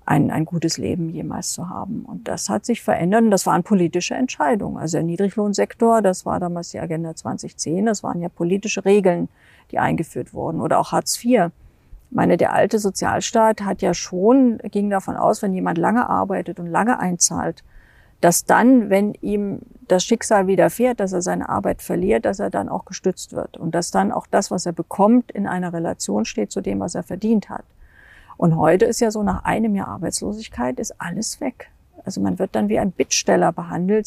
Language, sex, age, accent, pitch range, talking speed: German, female, 50-69, German, 175-230 Hz, 195 wpm